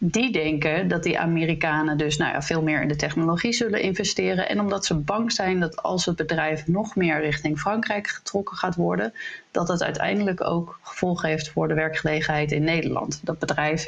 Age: 30-49